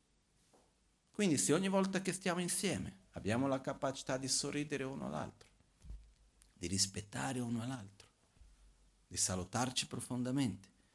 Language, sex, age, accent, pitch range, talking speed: Italian, male, 50-69, native, 95-120 Hz, 115 wpm